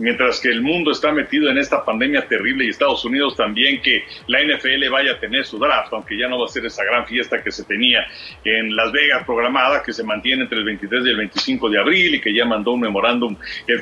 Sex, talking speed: male, 245 wpm